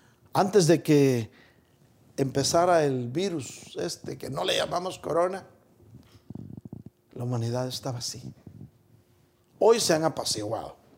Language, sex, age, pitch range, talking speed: Spanish, male, 50-69, 120-155 Hz, 110 wpm